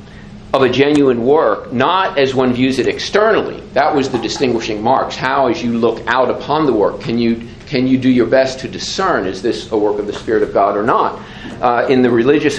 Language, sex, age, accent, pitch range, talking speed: English, male, 50-69, American, 115-135 Hz, 225 wpm